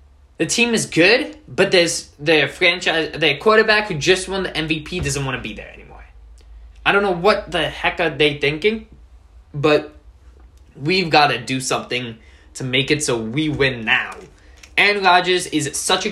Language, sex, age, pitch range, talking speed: English, male, 20-39, 105-160 Hz, 180 wpm